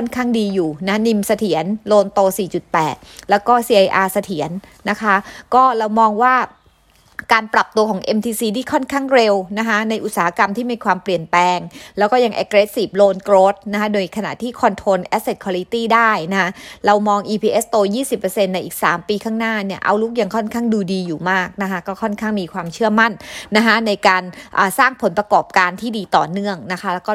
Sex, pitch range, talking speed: female, 185-225 Hz, 50 wpm